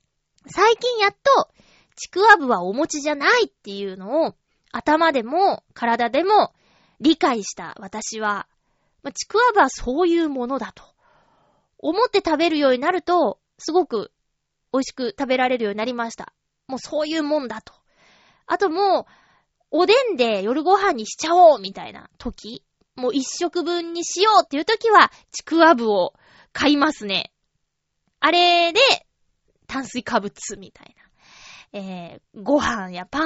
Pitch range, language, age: 215-345 Hz, Japanese, 20-39